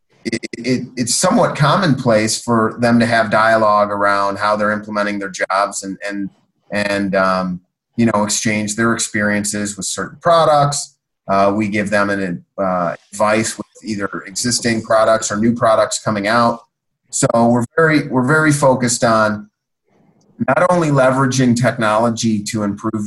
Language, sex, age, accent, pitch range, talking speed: English, male, 30-49, American, 105-120 Hz, 150 wpm